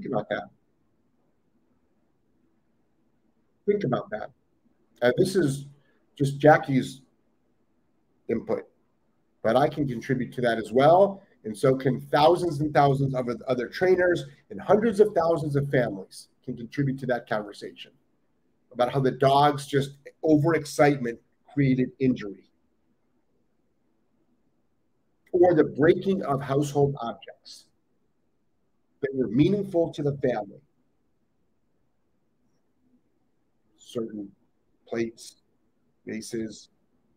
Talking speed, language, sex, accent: 100 wpm, English, male, American